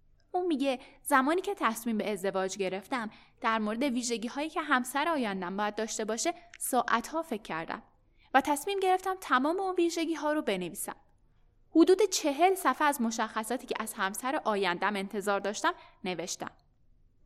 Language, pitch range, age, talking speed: Persian, 215-315 Hz, 10-29, 150 wpm